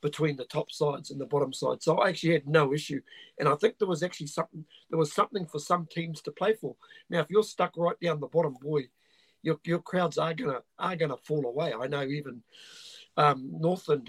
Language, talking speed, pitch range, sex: English, 225 wpm, 145-180 Hz, male